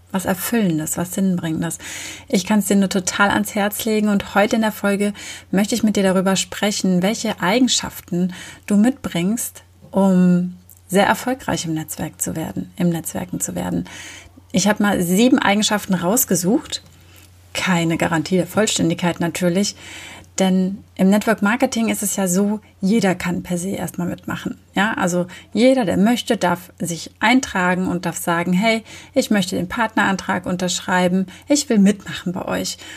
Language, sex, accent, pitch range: German, female, German, 180-215 Hz